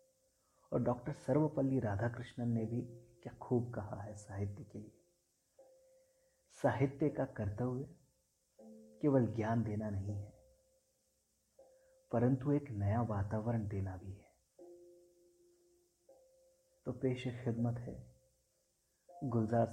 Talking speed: 100 wpm